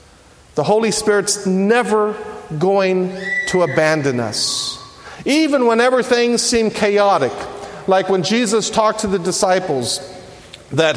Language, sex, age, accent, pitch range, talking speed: English, male, 50-69, American, 185-225 Hz, 115 wpm